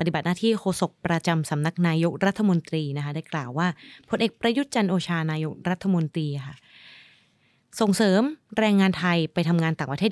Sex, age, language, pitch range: female, 20-39, Thai, 155-205 Hz